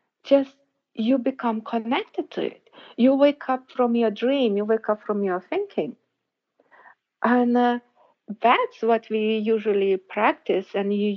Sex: female